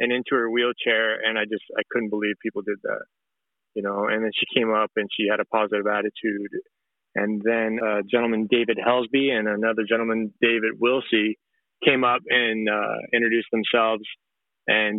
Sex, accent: male, American